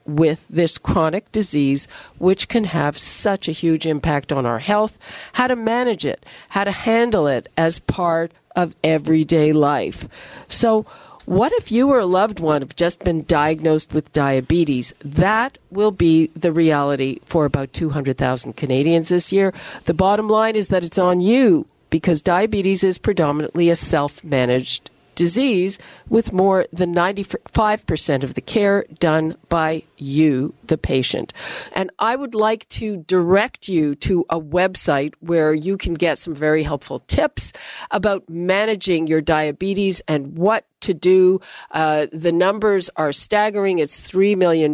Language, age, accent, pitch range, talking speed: English, 50-69, American, 155-200 Hz, 150 wpm